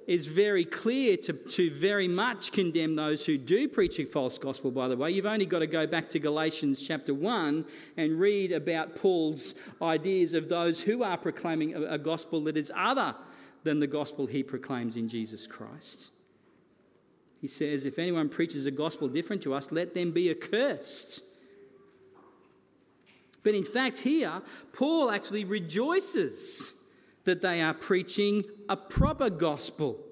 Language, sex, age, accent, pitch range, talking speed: English, male, 40-59, Australian, 165-255 Hz, 155 wpm